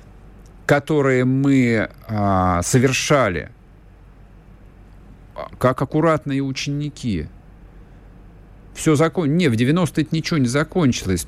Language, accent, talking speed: Russian, native, 75 wpm